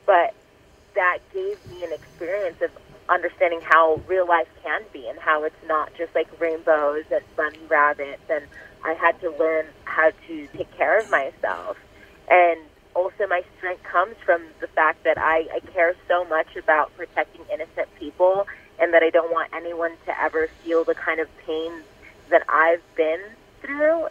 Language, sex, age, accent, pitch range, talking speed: English, female, 30-49, American, 155-185 Hz, 170 wpm